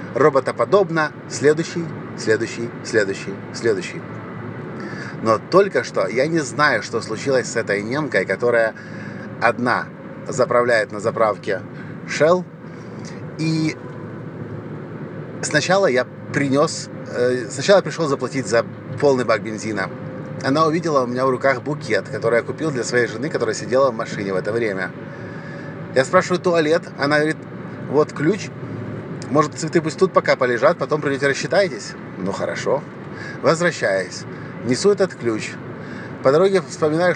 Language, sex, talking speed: Russian, male, 125 wpm